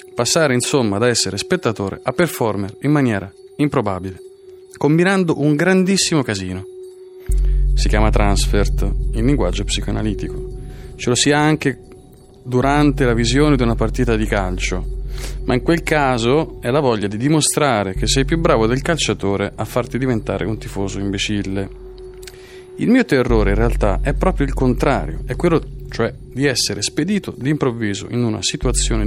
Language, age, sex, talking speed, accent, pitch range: Italian, 30-49, male, 150 wpm, native, 110-145 Hz